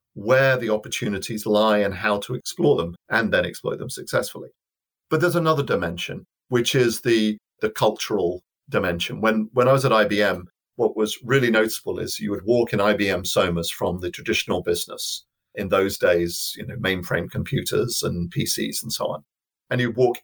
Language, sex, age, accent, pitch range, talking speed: English, male, 40-59, British, 100-120 Hz, 180 wpm